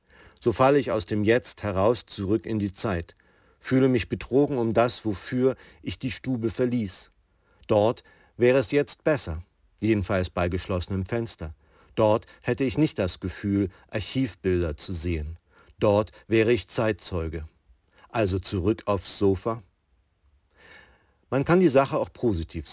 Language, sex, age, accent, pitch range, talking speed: German, male, 50-69, German, 90-115 Hz, 140 wpm